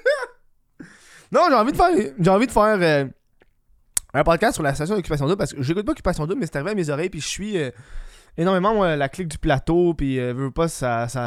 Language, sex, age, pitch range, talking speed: French, male, 20-39, 135-185 Hz, 250 wpm